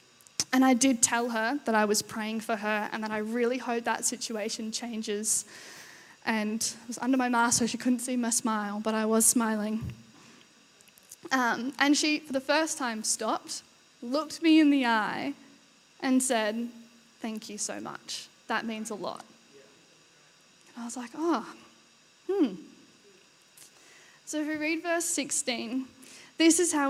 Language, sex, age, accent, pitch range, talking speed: English, female, 10-29, Australian, 225-275 Hz, 165 wpm